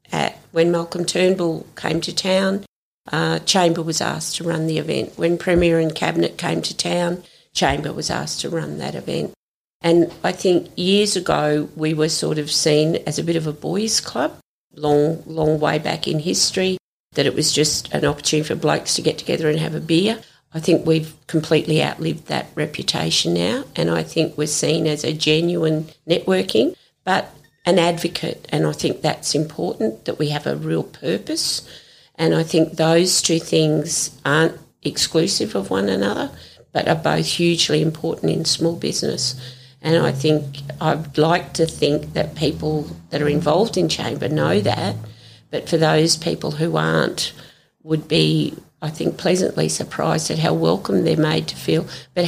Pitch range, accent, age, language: 150-170 Hz, Australian, 50-69, English